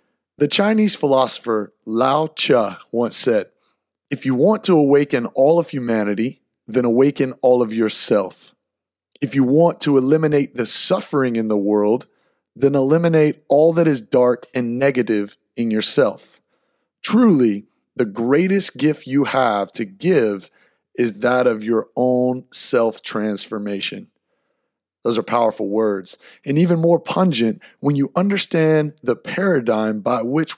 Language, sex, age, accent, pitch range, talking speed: English, male, 30-49, American, 120-160 Hz, 135 wpm